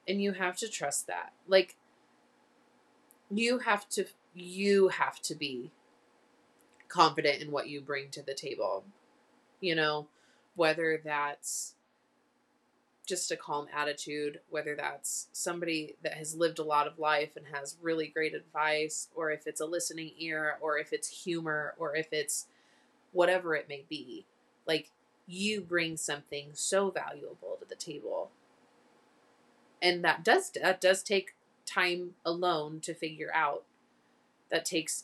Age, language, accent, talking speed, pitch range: 20-39, English, American, 145 wpm, 155-195 Hz